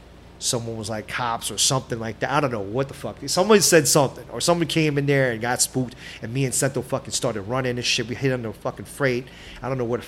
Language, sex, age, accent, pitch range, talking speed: English, male, 30-49, American, 115-145 Hz, 270 wpm